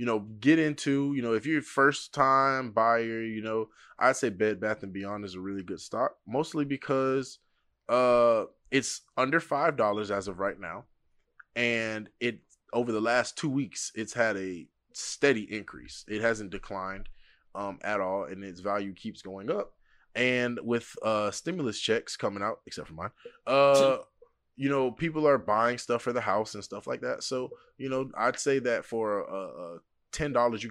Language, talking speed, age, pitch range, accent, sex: English, 180 wpm, 20-39, 100-125 Hz, American, male